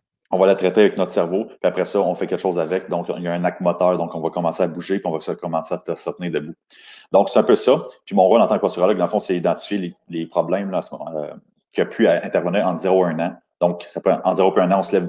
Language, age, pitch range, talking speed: French, 30-49, 85-95 Hz, 305 wpm